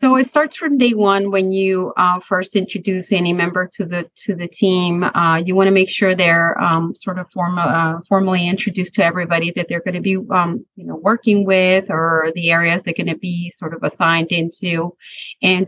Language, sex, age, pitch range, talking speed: English, female, 30-49, 175-200 Hz, 215 wpm